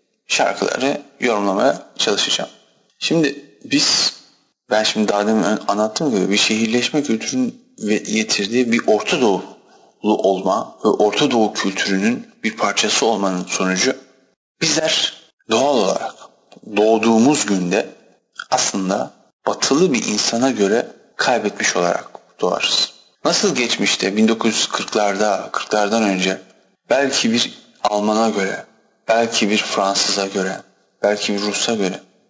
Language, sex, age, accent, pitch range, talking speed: Turkish, male, 40-59, native, 100-120 Hz, 105 wpm